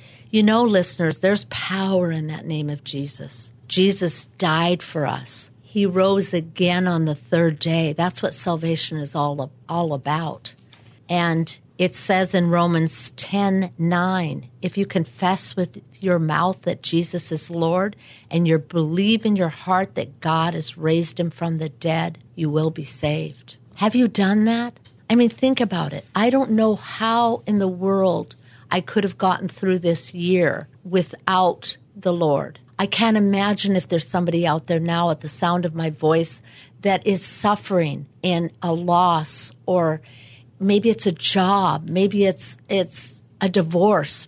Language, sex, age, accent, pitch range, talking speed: English, female, 50-69, American, 155-195 Hz, 165 wpm